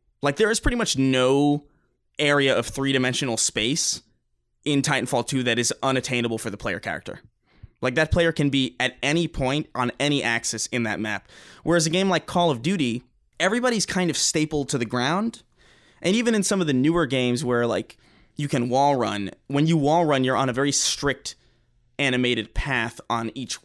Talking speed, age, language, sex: 190 wpm, 20-39, English, male